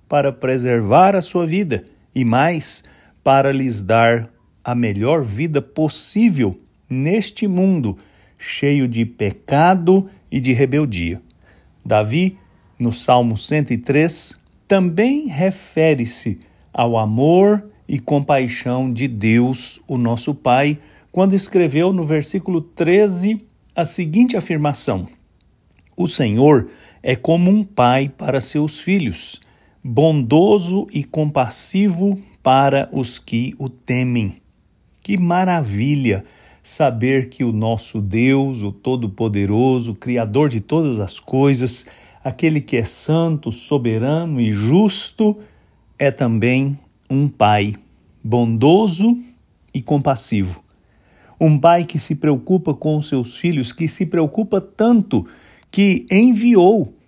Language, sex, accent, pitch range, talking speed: English, male, Brazilian, 120-175 Hz, 110 wpm